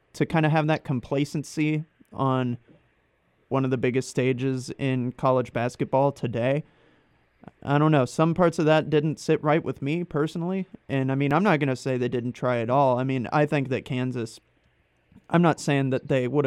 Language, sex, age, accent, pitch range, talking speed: English, male, 30-49, American, 125-145 Hz, 195 wpm